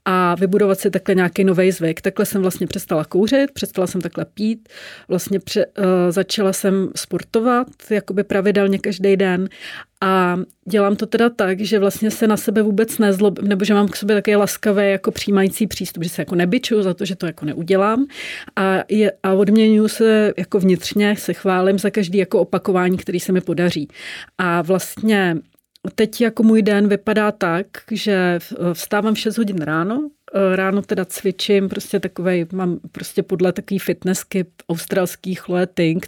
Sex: female